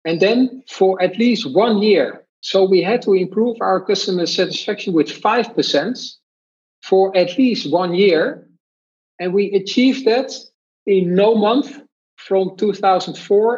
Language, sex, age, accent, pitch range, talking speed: English, male, 50-69, Dutch, 180-220 Hz, 135 wpm